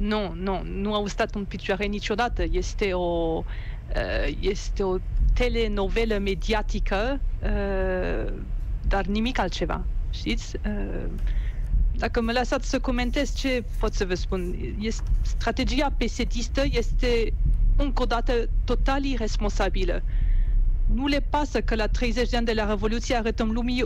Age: 40-59